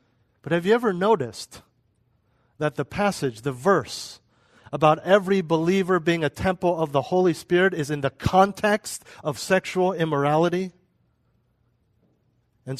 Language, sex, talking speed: English, male, 130 wpm